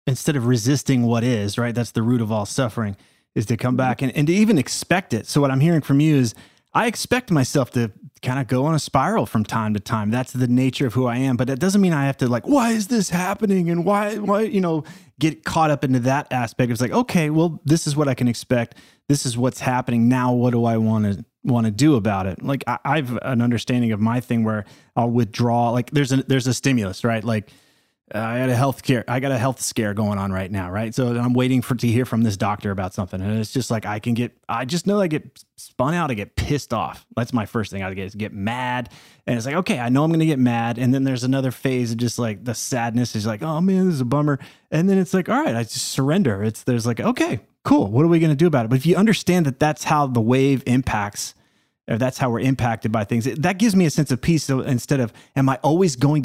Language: English